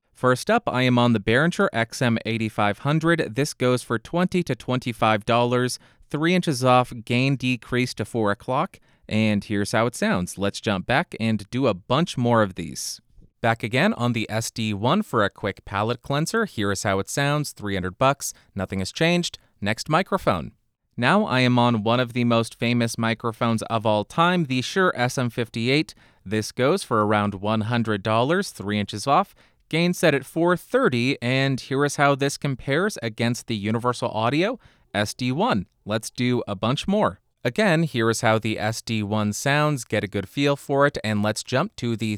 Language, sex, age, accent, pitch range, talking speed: English, male, 30-49, American, 110-135 Hz, 170 wpm